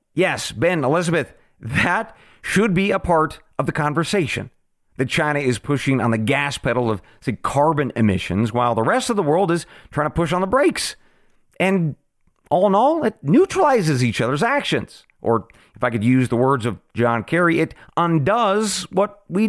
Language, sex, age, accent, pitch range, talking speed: English, male, 40-59, American, 120-185 Hz, 180 wpm